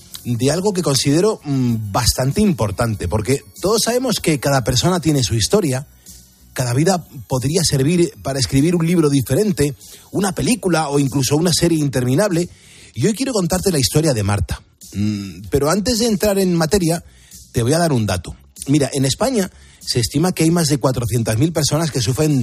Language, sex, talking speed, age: Spanish, male, 170 wpm, 30-49